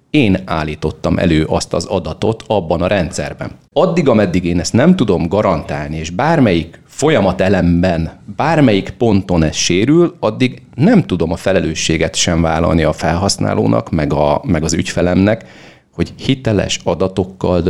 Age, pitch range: 30-49, 85-110 Hz